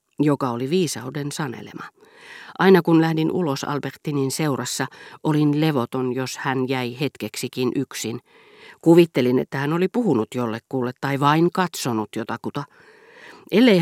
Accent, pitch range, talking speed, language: native, 125-165 Hz, 120 wpm, Finnish